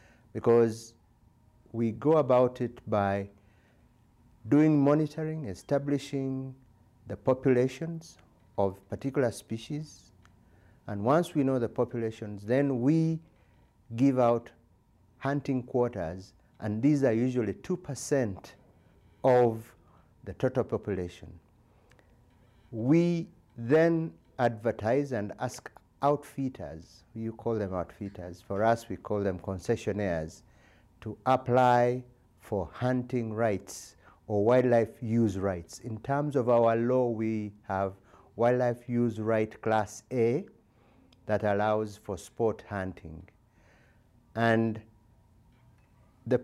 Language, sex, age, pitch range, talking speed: English, male, 50-69, 105-125 Hz, 100 wpm